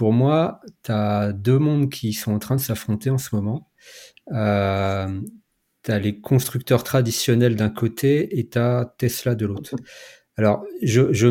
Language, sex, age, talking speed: French, male, 40-59, 170 wpm